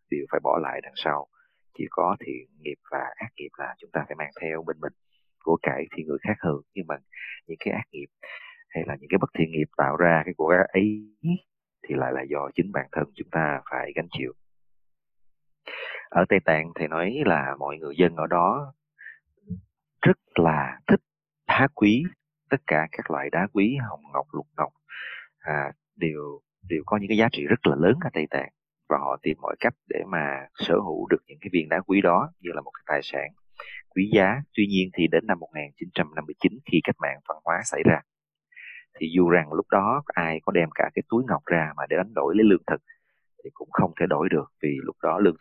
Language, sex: English, male